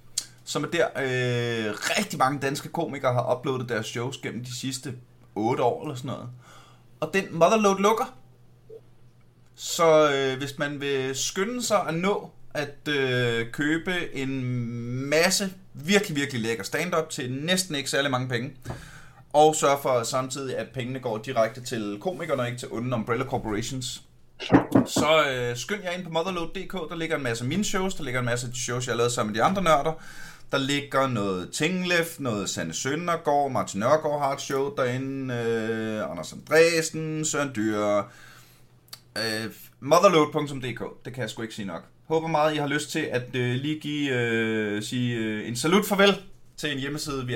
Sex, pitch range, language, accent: male, 120-165 Hz, Danish, native